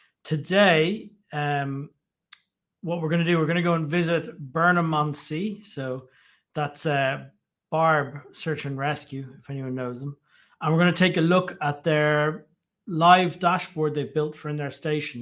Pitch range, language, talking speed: 140-170 Hz, English, 170 wpm